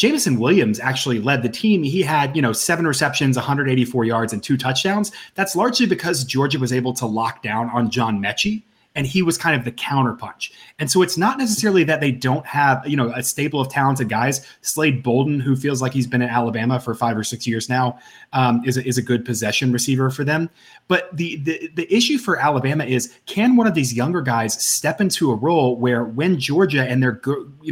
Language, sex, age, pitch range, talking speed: English, male, 30-49, 120-160 Hz, 215 wpm